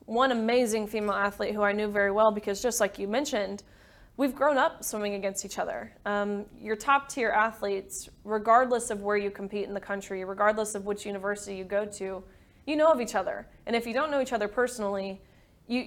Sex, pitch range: female, 200-230 Hz